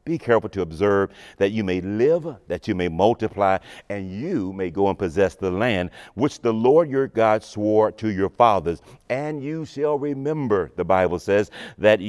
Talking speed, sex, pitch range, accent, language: 185 wpm, male, 105-145 Hz, American, English